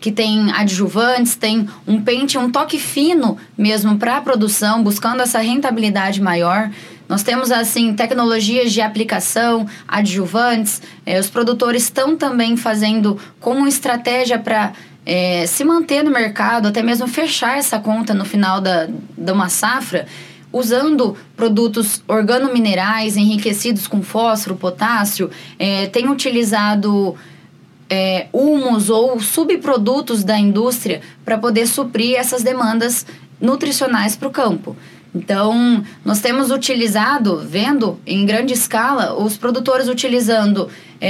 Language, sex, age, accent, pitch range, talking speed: Portuguese, female, 10-29, Brazilian, 210-250 Hz, 125 wpm